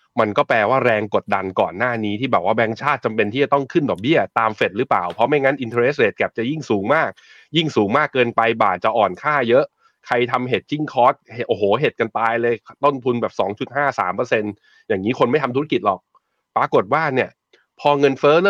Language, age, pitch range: Thai, 20-39, 100-125 Hz